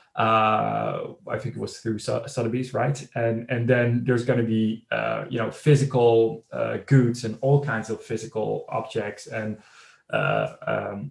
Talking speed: 165 wpm